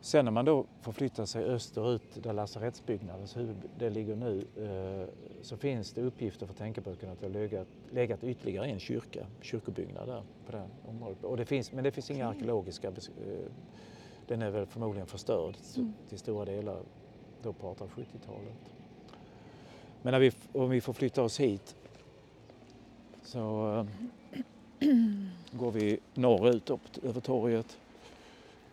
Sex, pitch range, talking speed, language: male, 105-130 Hz, 145 wpm, Swedish